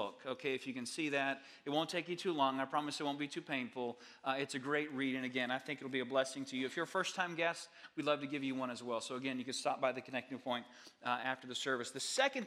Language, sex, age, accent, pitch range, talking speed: English, male, 30-49, American, 145-215 Hz, 305 wpm